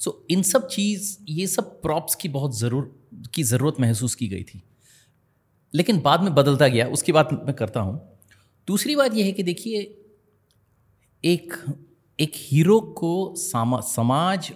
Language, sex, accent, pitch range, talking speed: Hindi, male, native, 115-165 Hz, 155 wpm